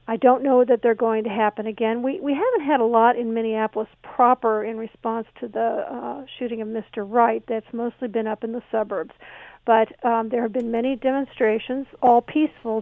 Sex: female